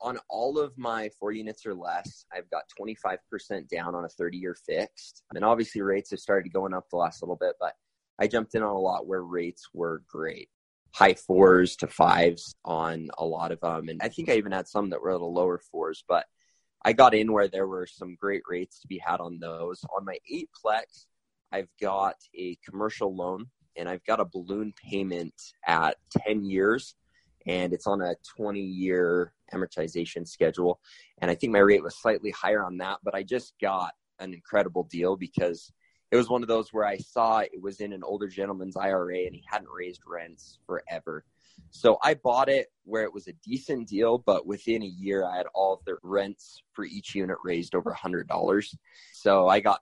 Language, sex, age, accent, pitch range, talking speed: English, male, 20-39, American, 90-110 Hz, 200 wpm